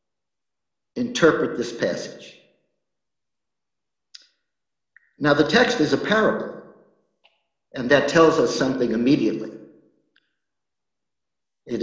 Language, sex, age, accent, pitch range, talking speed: English, male, 50-69, American, 130-190 Hz, 80 wpm